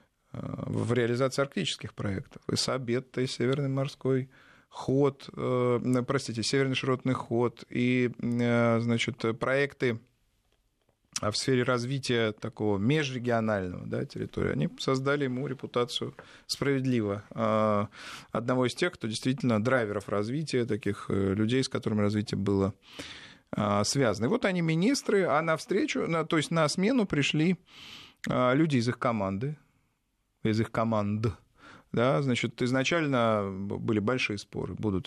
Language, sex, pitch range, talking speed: Russian, male, 110-135 Hz, 110 wpm